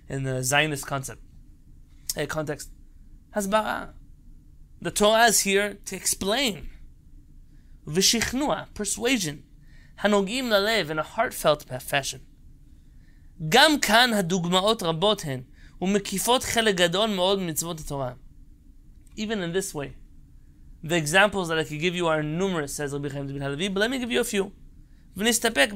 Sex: male